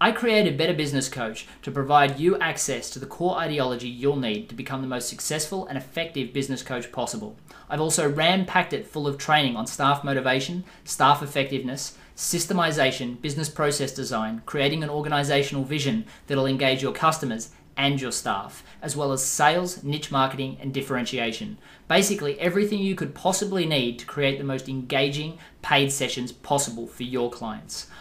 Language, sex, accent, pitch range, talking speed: English, male, Australian, 135-165 Hz, 165 wpm